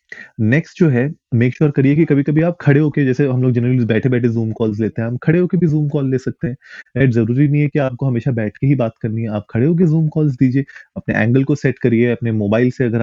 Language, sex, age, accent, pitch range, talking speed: Hindi, male, 20-39, native, 110-130 Hz, 265 wpm